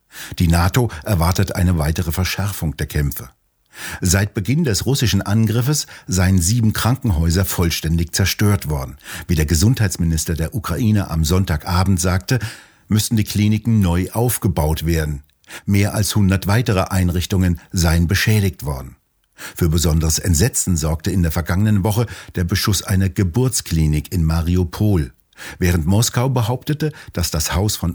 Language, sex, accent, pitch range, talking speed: German, male, German, 85-110 Hz, 135 wpm